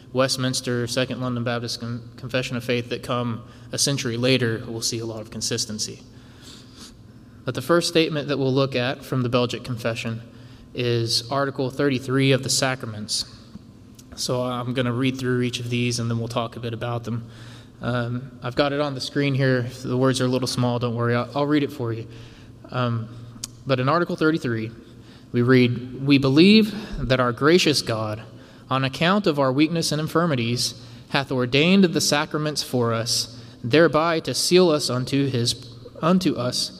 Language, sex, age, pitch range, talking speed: English, male, 20-39, 120-145 Hz, 180 wpm